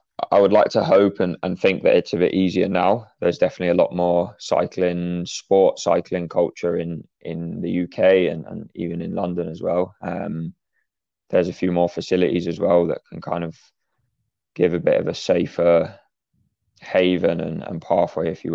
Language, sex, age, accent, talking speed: English, male, 20-39, British, 190 wpm